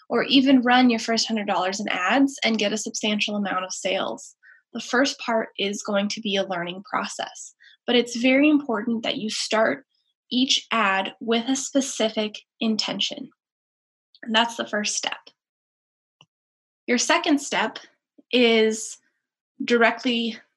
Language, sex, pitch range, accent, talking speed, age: English, female, 210-260 Hz, American, 140 wpm, 10-29